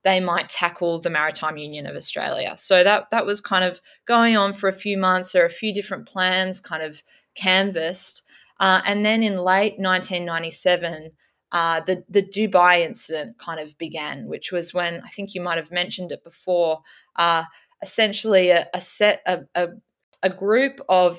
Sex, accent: female, Australian